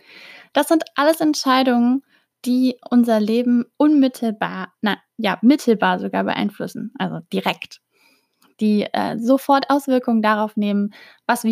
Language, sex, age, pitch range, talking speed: German, female, 10-29, 215-275 Hz, 120 wpm